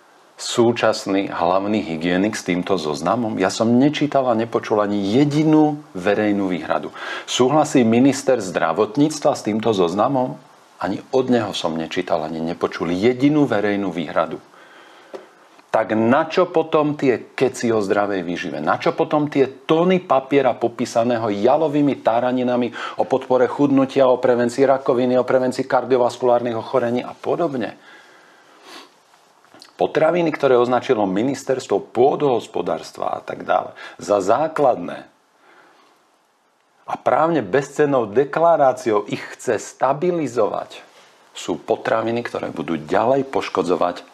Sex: male